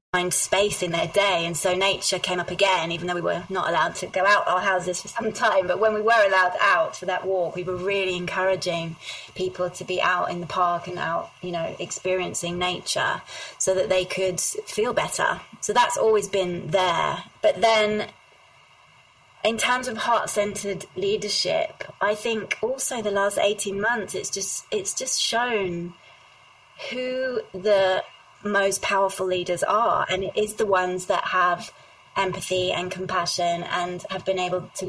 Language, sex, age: English, female, 20-39